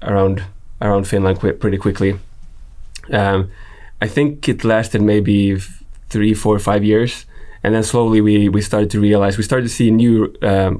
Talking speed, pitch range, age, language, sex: 170 wpm, 100-110 Hz, 20-39, English, male